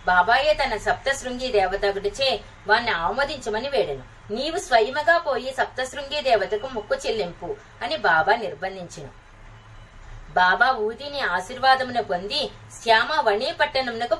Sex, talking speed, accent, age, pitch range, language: female, 105 wpm, native, 20-39, 195-285 Hz, Telugu